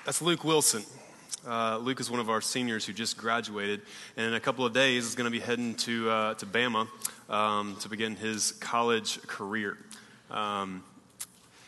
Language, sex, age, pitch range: English, male, 20-39, 120-150 Hz